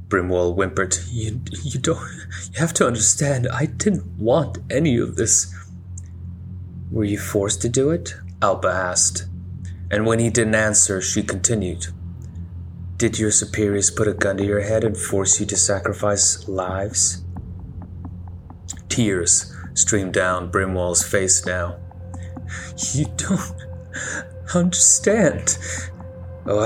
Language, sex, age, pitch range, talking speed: English, male, 30-49, 90-105 Hz, 125 wpm